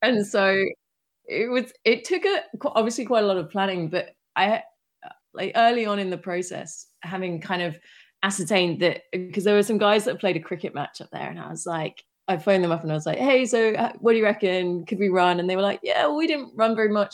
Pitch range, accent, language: 170-215 Hz, British, English